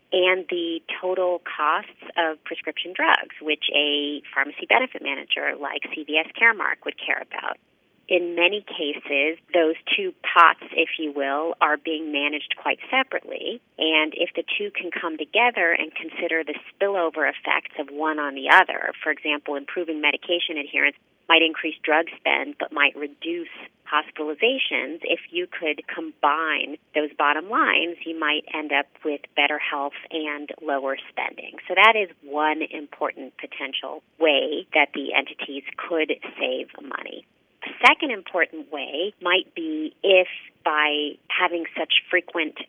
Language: English